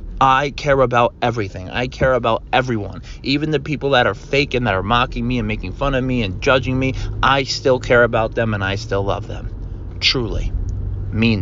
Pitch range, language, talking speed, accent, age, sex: 105-145 Hz, English, 200 wpm, American, 30-49, male